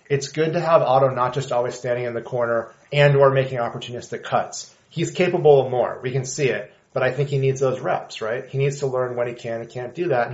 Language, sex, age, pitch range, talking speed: English, male, 30-49, 125-155 Hz, 260 wpm